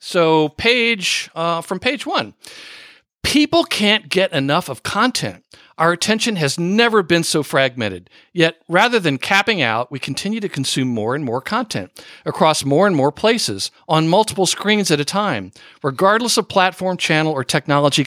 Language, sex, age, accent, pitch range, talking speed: English, male, 50-69, American, 125-185 Hz, 165 wpm